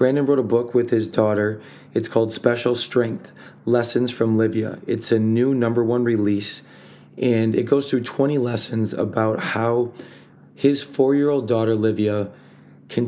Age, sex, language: 30-49, male, English